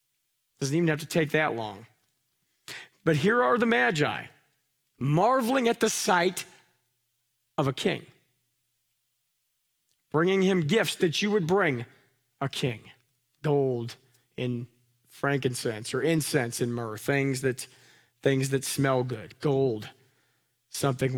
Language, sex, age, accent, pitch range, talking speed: English, male, 40-59, American, 125-170 Hz, 120 wpm